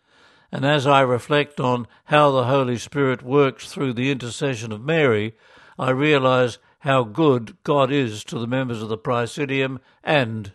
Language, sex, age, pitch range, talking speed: English, male, 60-79, 125-150 Hz, 160 wpm